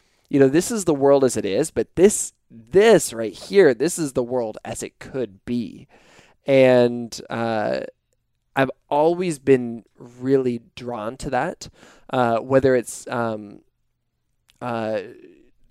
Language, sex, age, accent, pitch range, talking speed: English, male, 20-39, American, 110-140 Hz, 140 wpm